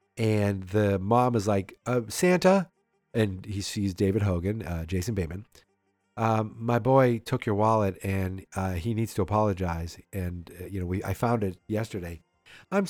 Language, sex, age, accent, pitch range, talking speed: English, male, 40-59, American, 95-130 Hz, 170 wpm